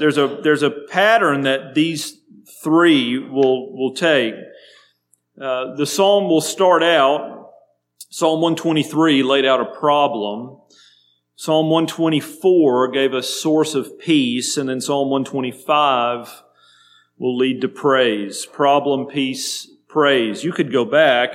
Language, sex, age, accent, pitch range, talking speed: English, male, 40-59, American, 125-155 Hz, 125 wpm